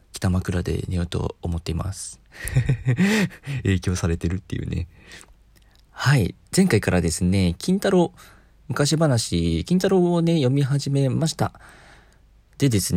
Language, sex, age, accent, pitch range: Japanese, male, 40-59, native, 90-125 Hz